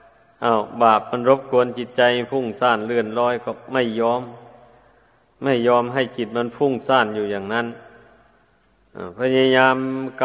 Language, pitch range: Thai, 120-135 Hz